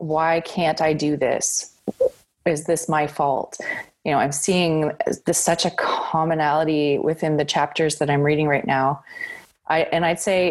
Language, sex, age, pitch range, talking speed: English, female, 20-39, 150-170 Hz, 165 wpm